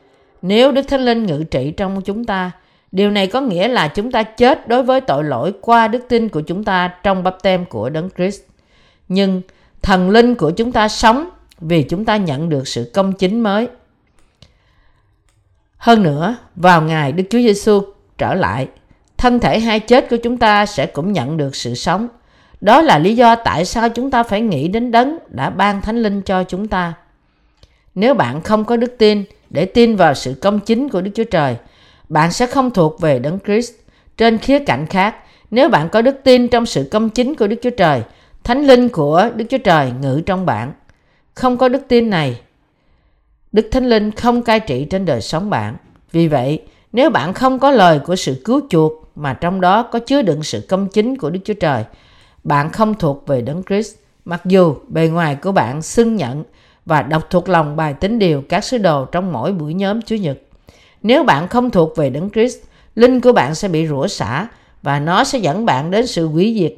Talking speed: 210 wpm